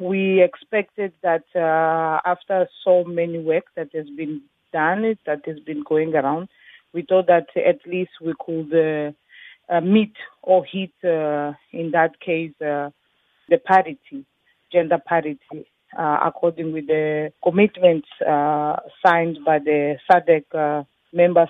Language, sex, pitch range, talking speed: English, female, 160-185 Hz, 140 wpm